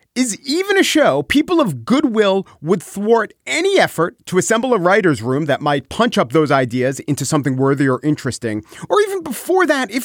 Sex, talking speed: male, 190 wpm